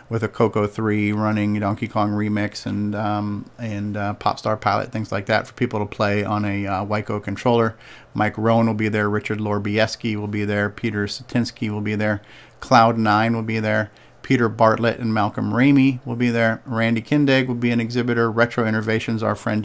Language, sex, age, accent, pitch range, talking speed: English, male, 40-59, American, 105-125 Hz, 195 wpm